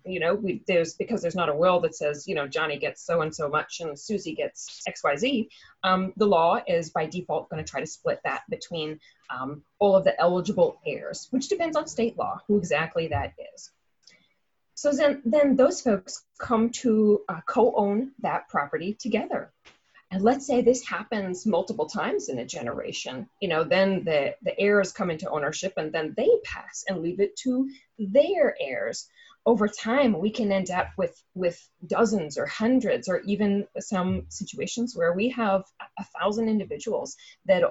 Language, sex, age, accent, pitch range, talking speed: English, female, 30-49, American, 170-240 Hz, 180 wpm